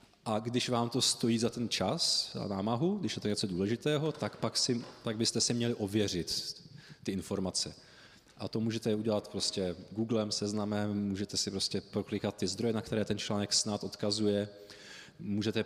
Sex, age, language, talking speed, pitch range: male, 20-39, Czech, 165 wpm, 95-115 Hz